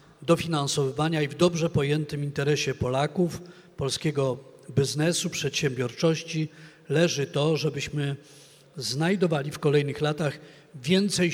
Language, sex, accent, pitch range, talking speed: Polish, male, native, 150-180 Hz, 95 wpm